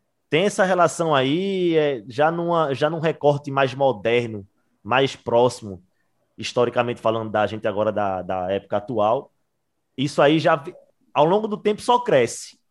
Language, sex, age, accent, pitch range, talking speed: Portuguese, male, 20-39, Brazilian, 120-170 Hz, 140 wpm